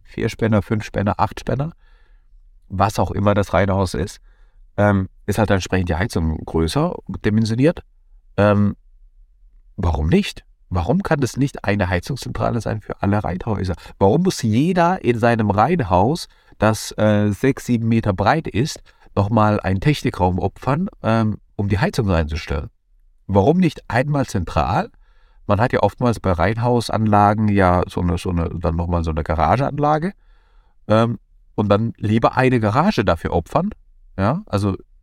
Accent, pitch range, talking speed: German, 90-115 Hz, 145 wpm